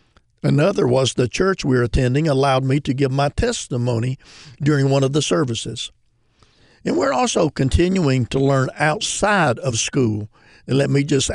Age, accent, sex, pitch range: 50-69, American, male, 125-155 Hz